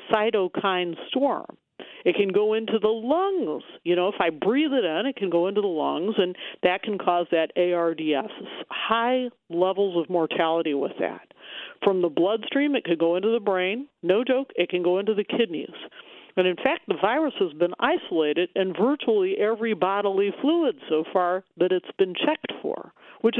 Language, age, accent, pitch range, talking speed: English, 50-69, American, 185-255 Hz, 180 wpm